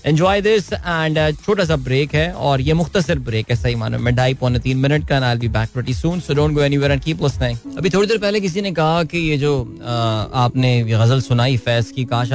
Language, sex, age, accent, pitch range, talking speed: Hindi, male, 20-39, native, 120-150 Hz, 95 wpm